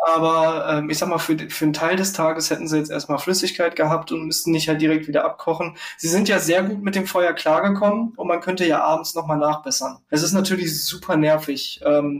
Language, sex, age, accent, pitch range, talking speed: German, male, 20-39, German, 155-180 Hz, 225 wpm